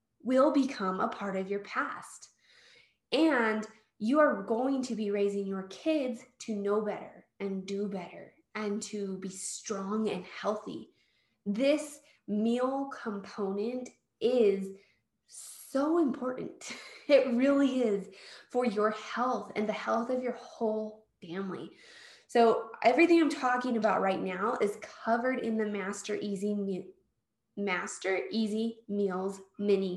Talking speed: 130 wpm